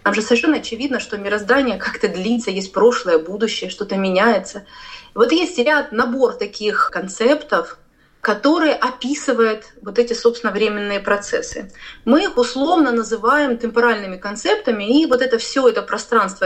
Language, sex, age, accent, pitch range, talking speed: Russian, female, 30-49, native, 205-265 Hz, 140 wpm